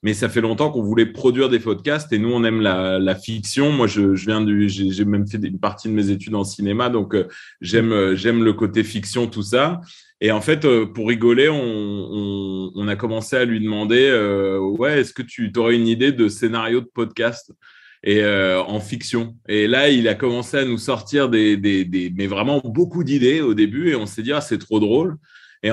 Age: 30-49